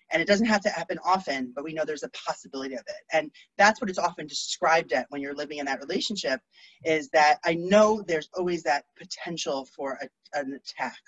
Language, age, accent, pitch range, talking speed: English, 30-49, American, 150-180 Hz, 215 wpm